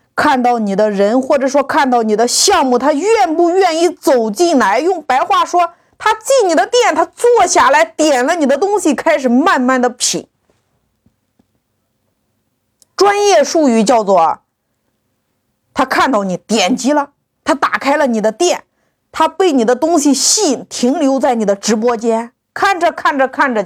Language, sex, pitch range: Chinese, female, 220-315 Hz